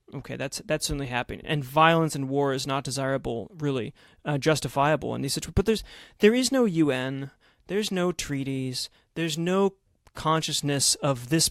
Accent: American